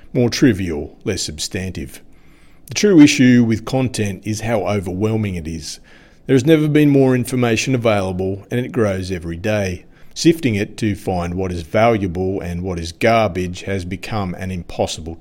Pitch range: 95-120 Hz